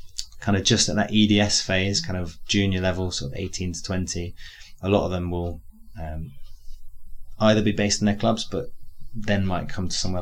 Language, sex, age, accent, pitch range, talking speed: English, male, 20-39, British, 85-100 Hz, 195 wpm